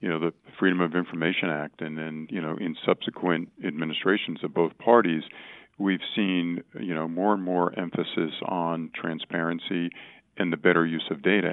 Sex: male